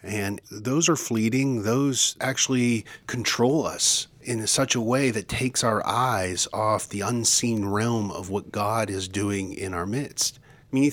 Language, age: English, 40-59